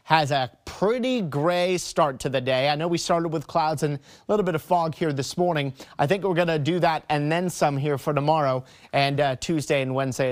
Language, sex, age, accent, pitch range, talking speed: English, male, 30-49, American, 140-175 Hz, 240 wpm